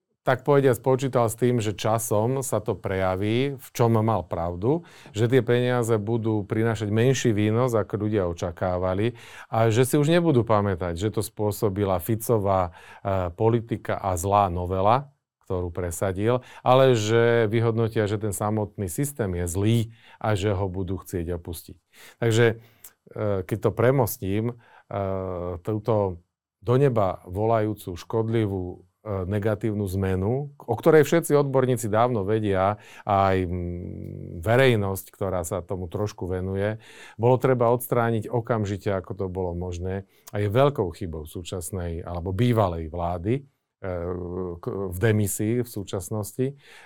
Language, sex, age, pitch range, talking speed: Slovak, male, 40-59, 95-120 Hz, 130 wpm